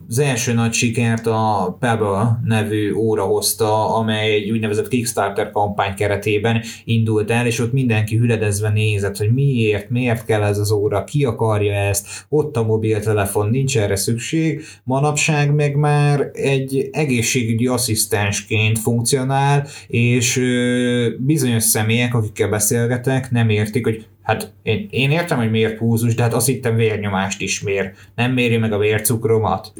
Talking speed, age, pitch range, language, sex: 145 wpm, 20-39, 105-125 Hz, Hungarian, male